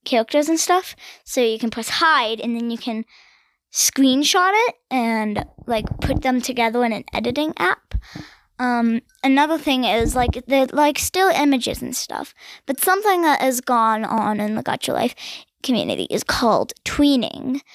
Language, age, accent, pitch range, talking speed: English, 10-29, American, 225-275 Hz, 160 wpm